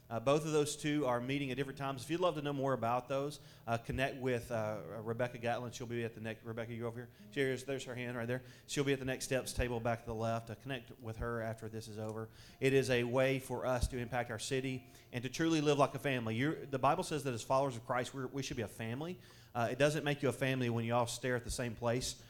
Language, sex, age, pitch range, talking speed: English, male, 30-49, 115-130 Hz, 285 wpm